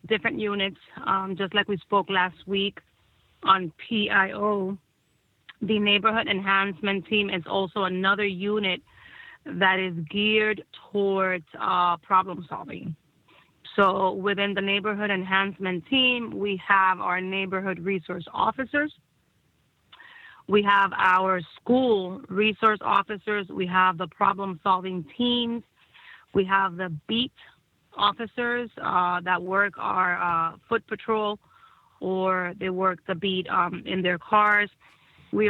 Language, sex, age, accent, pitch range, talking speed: English, female, 30-49, American, 185-215 Hz, 120 wpm